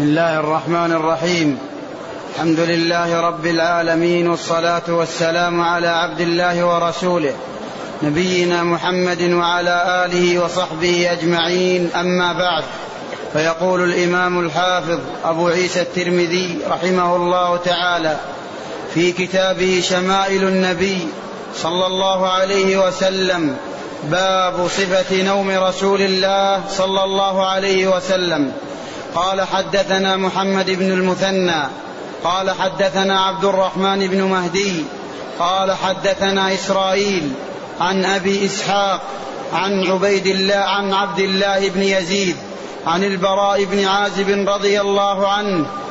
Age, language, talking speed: 30-49, Arabic, 105 wpm